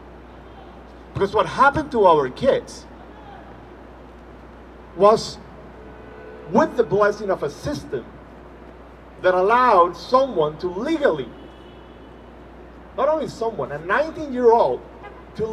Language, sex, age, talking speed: English, male, 40-59, 95 wpm